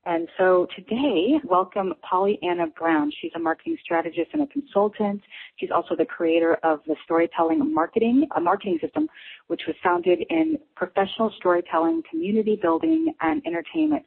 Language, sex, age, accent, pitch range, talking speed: English, female, 30-49, American, 165-220 Hz, 150 wpm